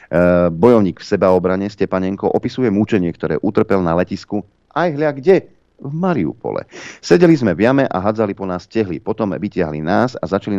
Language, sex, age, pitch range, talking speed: Slovak, male, 40-59, 90-110 Hz, 165 wpm